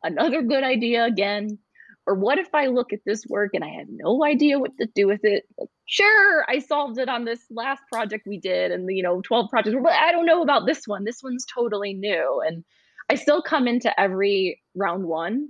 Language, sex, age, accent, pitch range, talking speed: English, female, 20-39, American, 200-280 Hz, 225 wpm